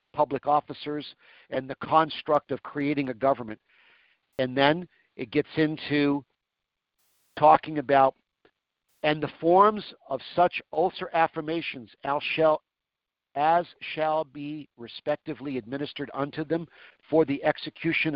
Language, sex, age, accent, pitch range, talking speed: English, male, 50-69, American, 135-165 Hz, 110 wpm